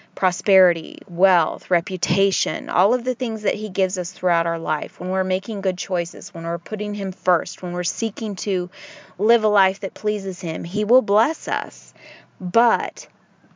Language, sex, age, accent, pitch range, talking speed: English, female, 30-49, American, 175-210 Hz, 175 wpm